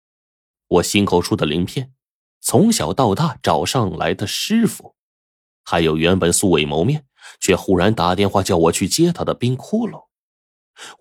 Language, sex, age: Chinese, male, 30-49